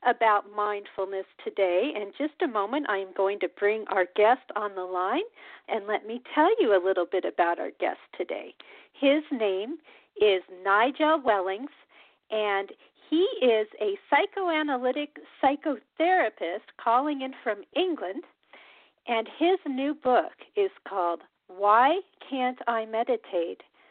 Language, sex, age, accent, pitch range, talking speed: English, female, 50-69, American, 205-330 Hz, 135 wpm